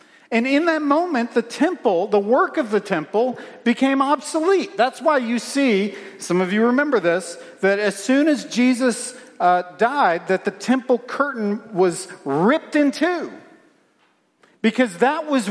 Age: 50-69